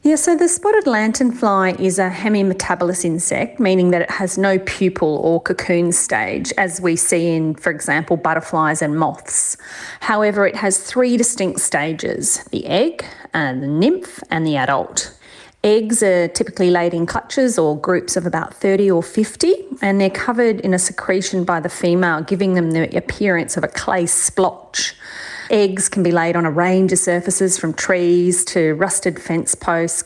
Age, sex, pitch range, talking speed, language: 30-49, female, 165-195 Hz, 170 wpm, English